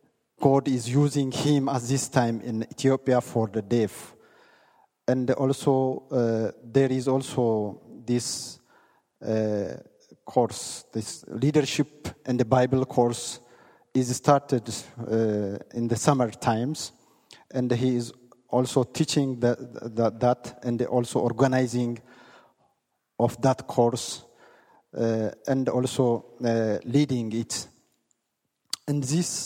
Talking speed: 115 wpm